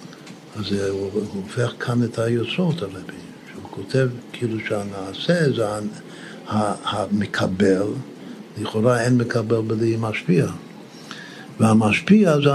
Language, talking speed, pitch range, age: Hebrew, 100 wpm, 115-140 Hz, 60-79